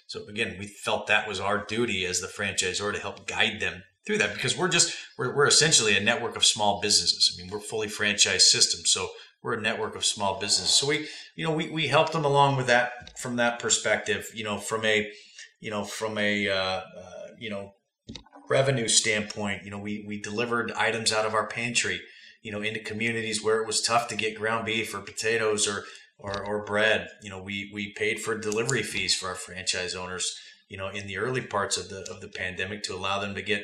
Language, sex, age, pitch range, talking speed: English, male, 30-49, 100-120 Hz, 225 wpm